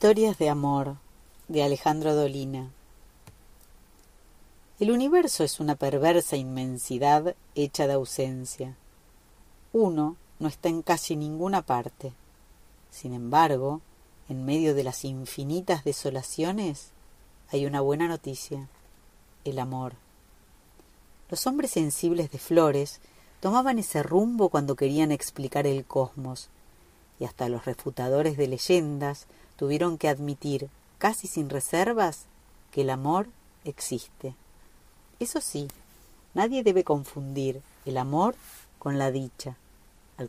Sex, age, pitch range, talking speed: female, 40-59, 130-165 Hz, 115 wpm